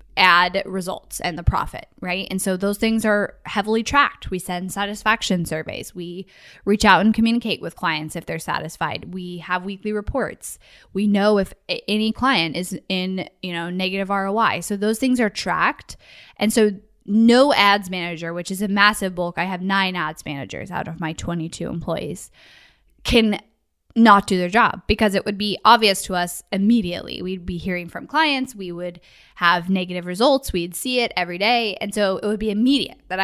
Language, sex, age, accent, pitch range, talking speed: English, female, 10-29, American, 175-215 Hz, 185 wpm